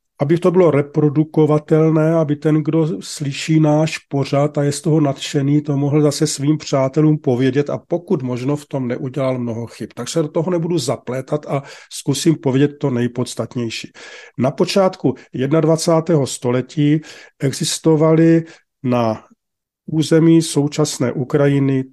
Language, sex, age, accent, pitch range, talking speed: Czech, male, 40-59, native, 130-160 Hz, 130 wpm